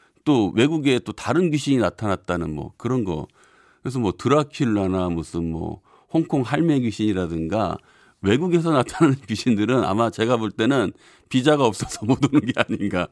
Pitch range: 100-150 Hz